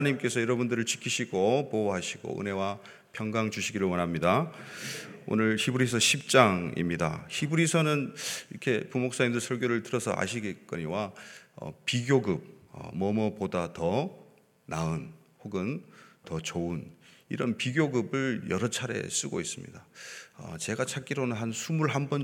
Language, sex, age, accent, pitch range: Korean, male, 30-49, native, 100-130 Hz